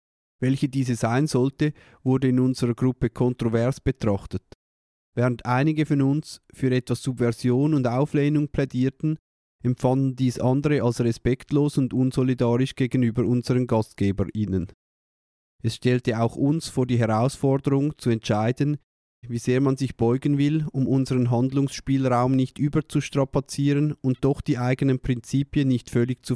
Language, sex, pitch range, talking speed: German, male, 115-135 Hz, 130 wpm